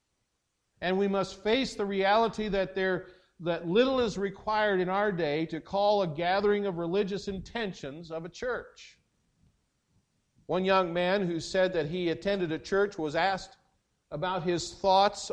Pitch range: 140-200 Hz